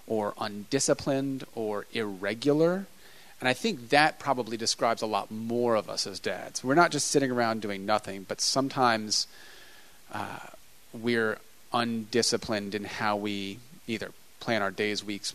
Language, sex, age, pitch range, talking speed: English, male, 30-49, 110-130 Hz, 145 wpm